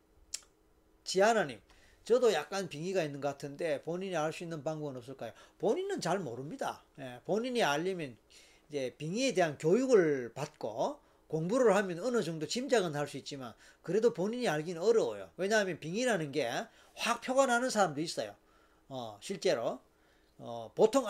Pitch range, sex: 145-215 Hz, male